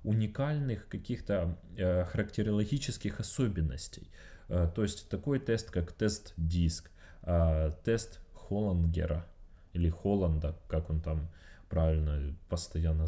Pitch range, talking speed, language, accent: 85-105 Hz, 100 wpm, Russian, native